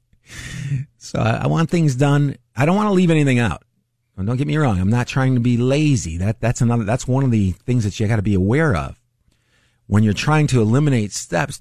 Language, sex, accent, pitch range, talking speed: English, male, American, 105-130 Hz, 220 wpm